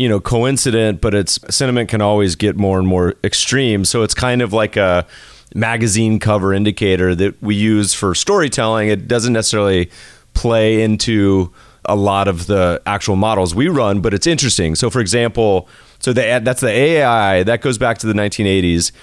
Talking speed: 175 wpm